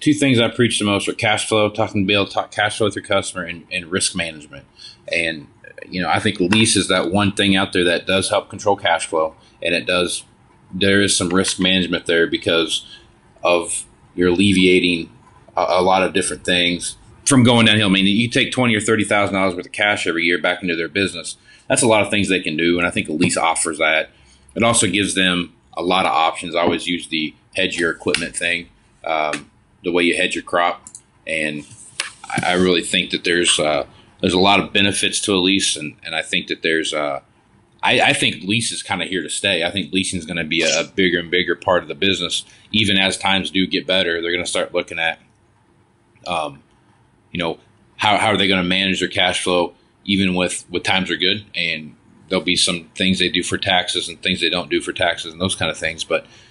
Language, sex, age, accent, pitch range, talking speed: English, male, 30-49, American, 85-105 Hz, 230 wpm